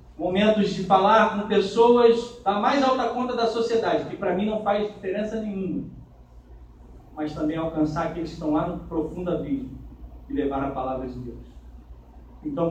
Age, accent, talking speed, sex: 40-59, Brazilian, 165 wpm, male